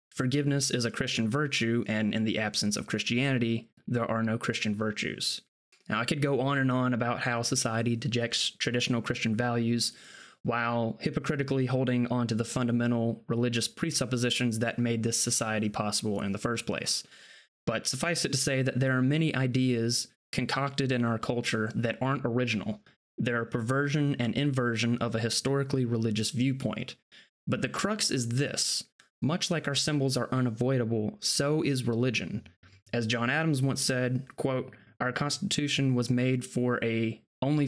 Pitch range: 115-135 Hz